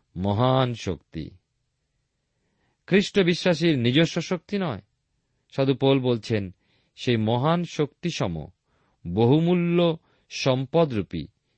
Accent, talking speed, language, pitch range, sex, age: native, 75 wpm, Bengali, 110-170 Hz, male, 50-69